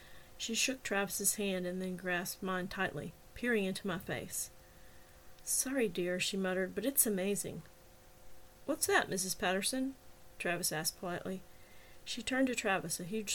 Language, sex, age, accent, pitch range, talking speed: English, female, 40-59, American, 190-235 Hz, 150 wpm